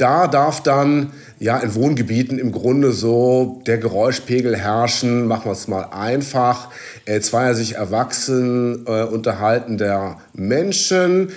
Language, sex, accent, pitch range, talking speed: German, male, German, 115-150 Hz, 130 wpm